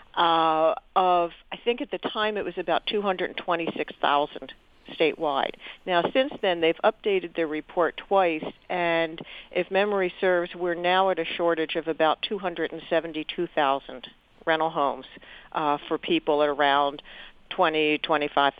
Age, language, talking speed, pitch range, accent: 50-69, English, 130 wpm, 150-185 Hz, American